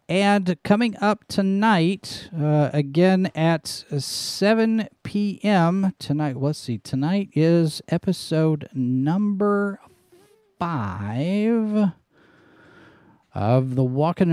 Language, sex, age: English, male, 50-69